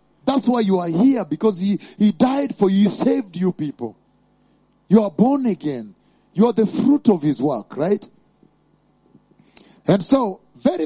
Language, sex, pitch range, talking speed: English, male, 185-245 Hz, 165 wpm